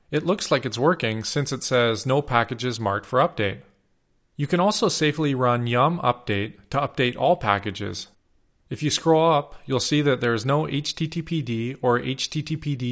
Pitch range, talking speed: 110-150 Hz, 170 wpm